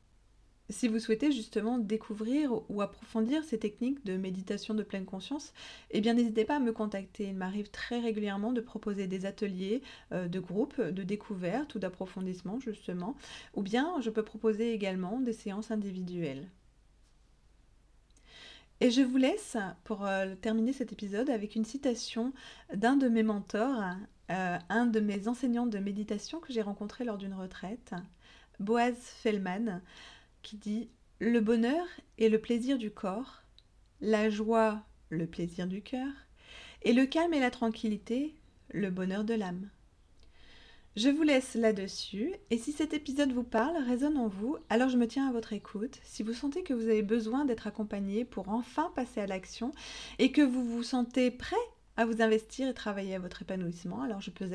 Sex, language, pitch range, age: female, French, 200-245 Hz, 30-49